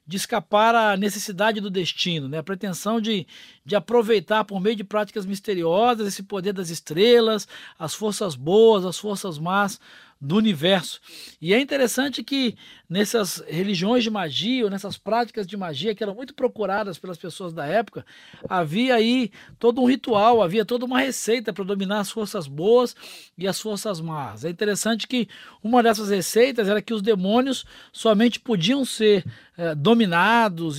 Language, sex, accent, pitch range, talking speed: Portuguese, male, Brazilian, 190-235 Hz, 160 wpm